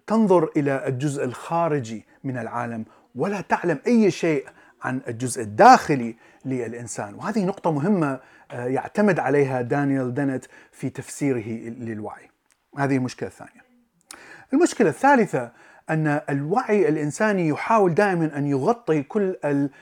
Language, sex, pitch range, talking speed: Arabic, male, 130-195 Hz, 110 wpm